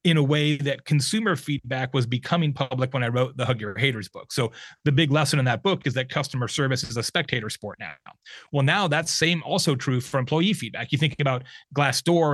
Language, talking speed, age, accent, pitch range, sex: English, 225 wpm, 30-49, American, 125-155 Hz, male